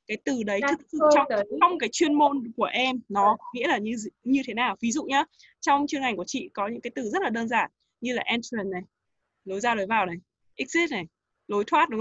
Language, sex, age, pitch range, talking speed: Vietnamese, female, 20-39, 210-280 Hz, 245 wpm